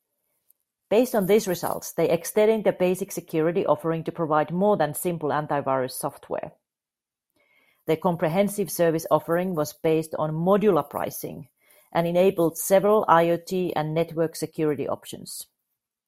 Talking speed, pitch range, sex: 125 wpm, 155-185 Hz, female